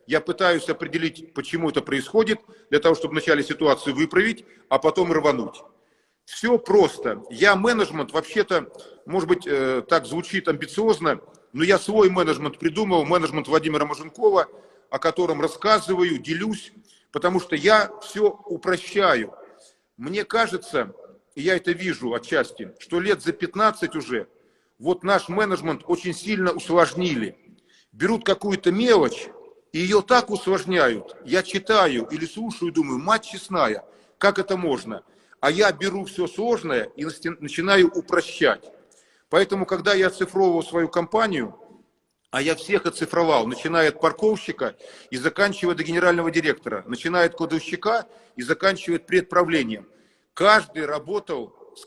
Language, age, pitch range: Russian, 50-69, 165-215 Hz